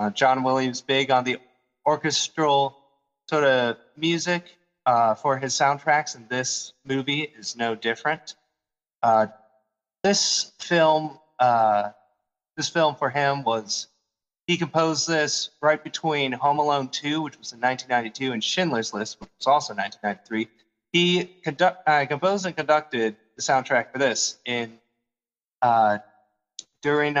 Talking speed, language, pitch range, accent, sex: 130 wpm, English, 115-150 Hz, American, male